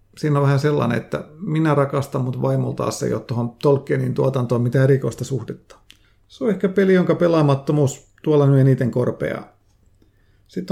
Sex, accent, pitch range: male, native, 130-155 Hz